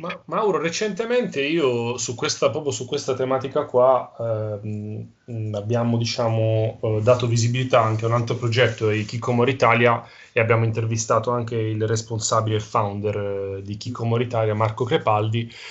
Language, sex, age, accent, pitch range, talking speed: Italian, male, 30-49, native, 115-150 Hz, 140 wpm